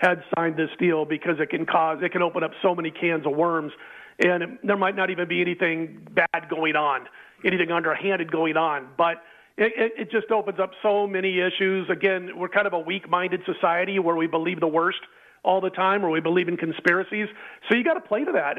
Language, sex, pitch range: English, male, 165-190 Hz